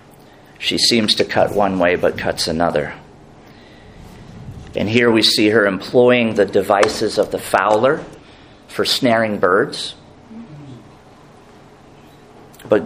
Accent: American